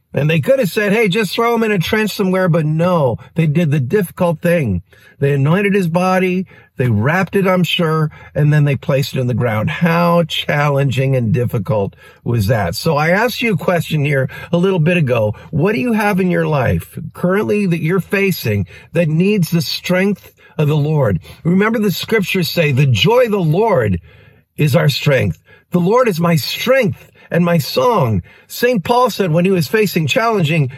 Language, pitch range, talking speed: English, 150-210 Hz, 195 wpm